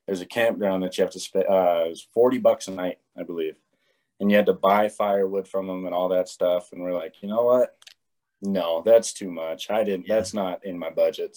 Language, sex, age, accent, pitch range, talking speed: English, male, 30-49, American, 95-135 Hz, 245 wpm